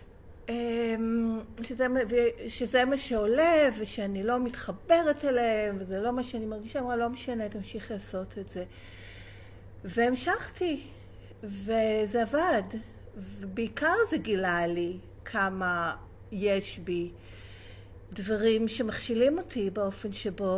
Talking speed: 100 wpm